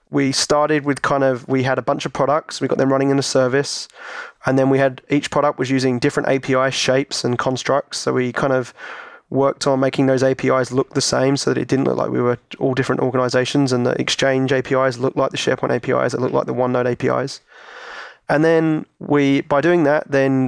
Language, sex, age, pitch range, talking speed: English, male, 20-39, 130-140 Hz, 225 wpm